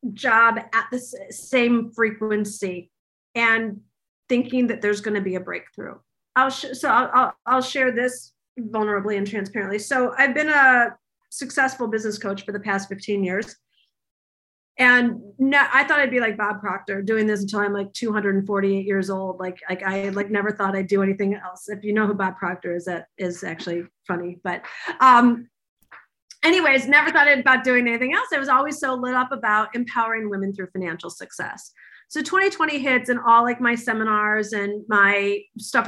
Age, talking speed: 40-59, 175 wpm